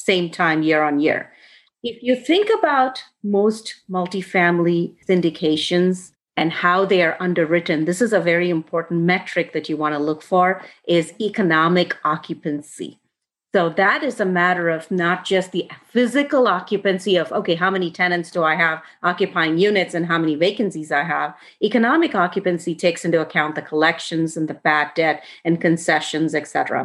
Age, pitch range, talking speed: 30-49, 160-195 Hz, 165 wpm